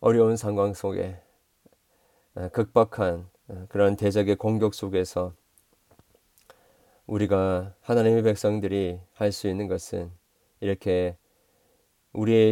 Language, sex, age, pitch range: Korean, male, 40-59, 90-110 Hz